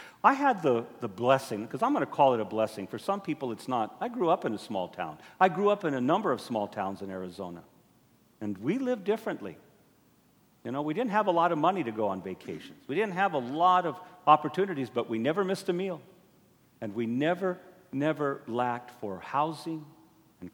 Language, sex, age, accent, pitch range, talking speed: English, male, 50-69, American, 110-170 Hz, 215 wpm